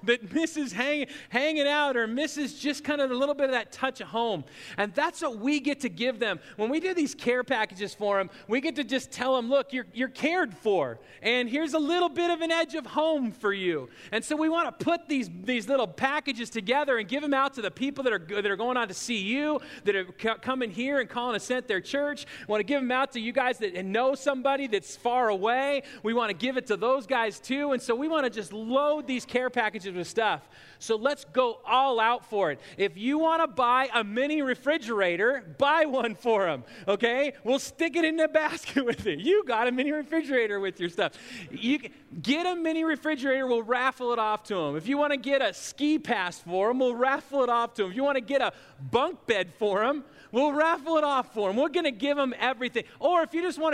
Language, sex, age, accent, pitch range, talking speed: English, male, 40-59, American, 225-290 Hz, 245 wpm